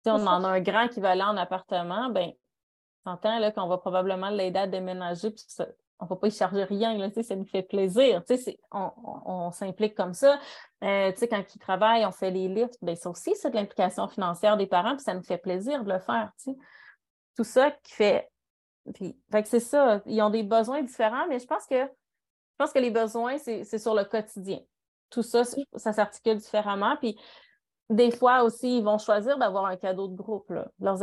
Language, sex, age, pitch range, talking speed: French, female, 30-49, 195-240 Hz, 215 wpm